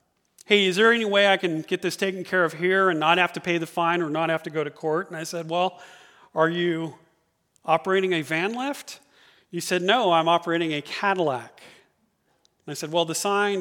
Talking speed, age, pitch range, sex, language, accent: 220 wpm, 40-59, 160-200 Hz, male, English, American